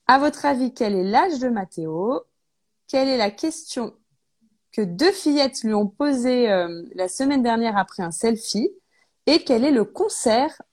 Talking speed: 170 wpm